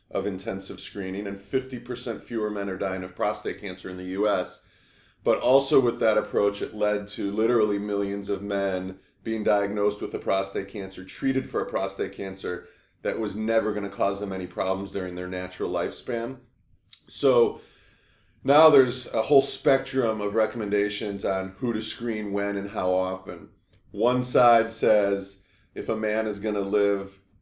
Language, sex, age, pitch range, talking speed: English, male, 30-49, 100-110 Hz, 165 wpm